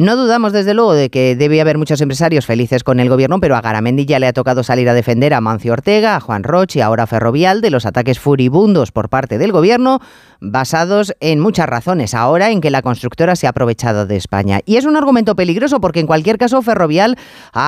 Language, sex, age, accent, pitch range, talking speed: Spanish, female, 30-49, Spanish, 125-215 Hz, 225 wpm